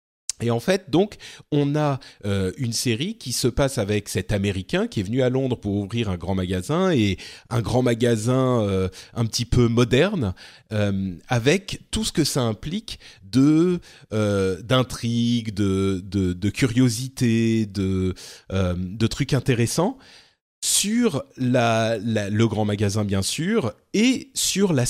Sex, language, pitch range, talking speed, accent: male, French, 100-130 Hz, 155 wpm, French